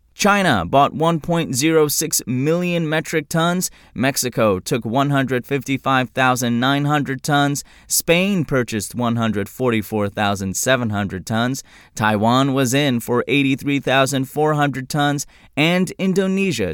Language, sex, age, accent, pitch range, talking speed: English, male, 20-39, American, 115-155 Hz, 80 wpm